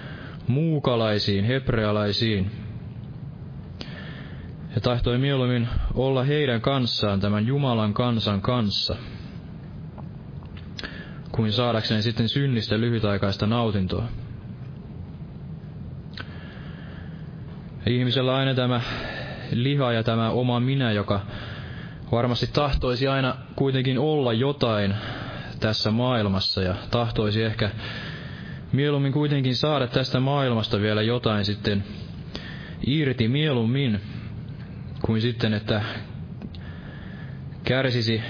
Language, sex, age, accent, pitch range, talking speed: Finnish, male, 20-39, native, 110-135 Hz, 80 wpm